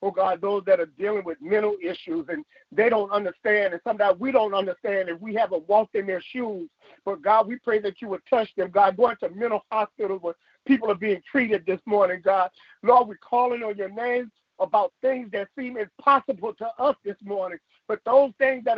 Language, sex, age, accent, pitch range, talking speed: English, male, 50-69, American, 215-280 Hz, 215 wpm